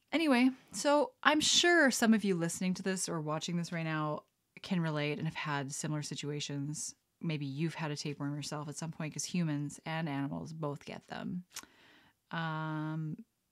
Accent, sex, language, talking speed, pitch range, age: American, female, English, 175 wpm, 160-230 Hz, 30-49